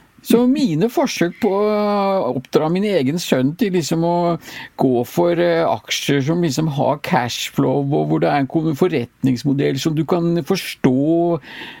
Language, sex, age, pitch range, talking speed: English, male, 50-69, 140-210 Hz, 140 wpm